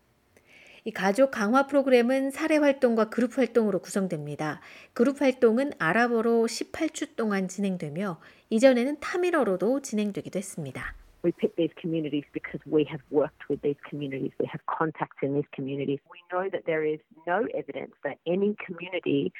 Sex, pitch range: female, 170-240 Hz